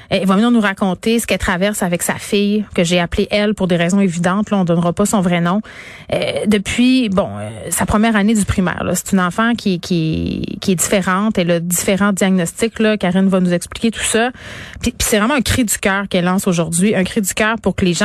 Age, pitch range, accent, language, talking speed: 30-49, 175-205 Hz, Canadian, French, 245 wpm